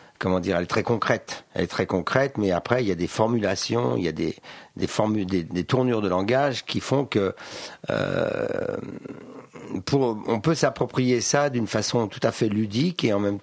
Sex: male